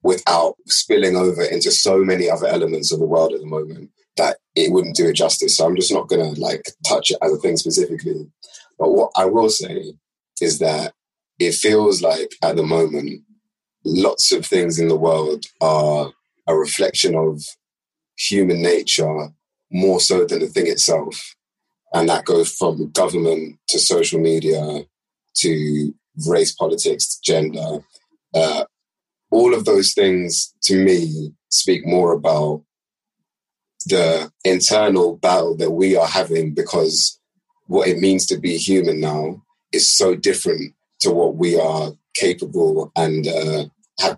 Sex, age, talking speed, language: male, 30-49, 150 wpm, English